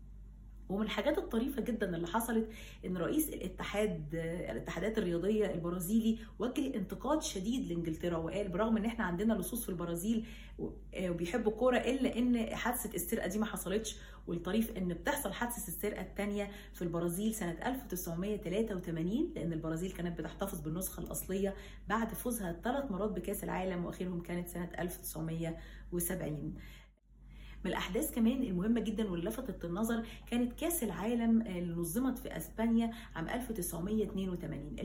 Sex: female